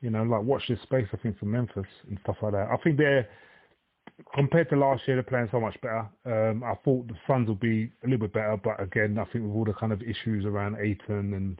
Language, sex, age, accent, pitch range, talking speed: English, male, 30-49, British, 110-125 Hz, 260 wpm